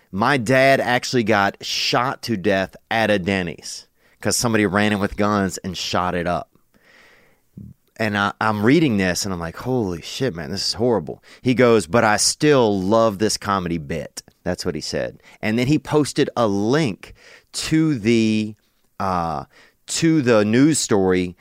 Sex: male